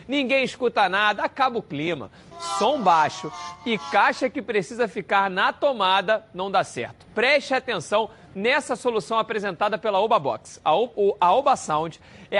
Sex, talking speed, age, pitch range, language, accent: male, 135 wpm, 40-59, 195-240 Hz, Portuguese, Brazilian